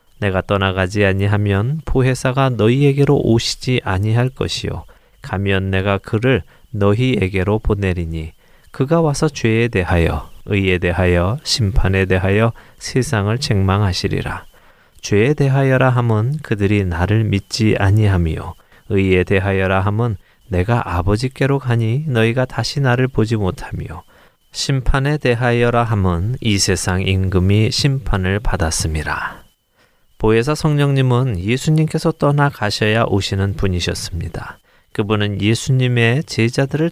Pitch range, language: 95-130 Hz, Korean